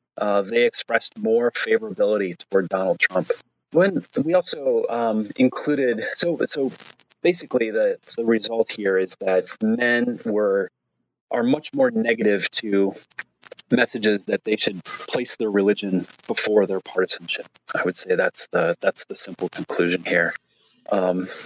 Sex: male